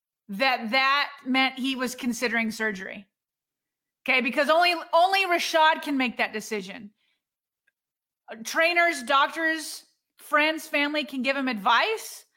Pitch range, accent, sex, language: 240-310 Hz, American, female, English